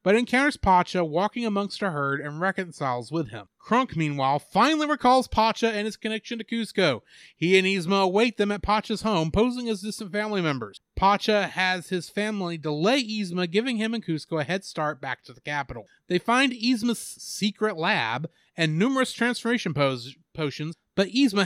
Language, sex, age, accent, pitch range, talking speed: English, male, 30-49, American, 165-235 Hz, 175 wpm